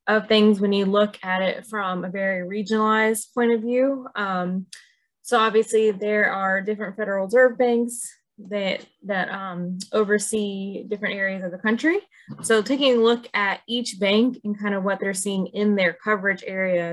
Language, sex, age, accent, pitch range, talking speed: English, female, 20-39, American, 190-220 Hz, 175 wpm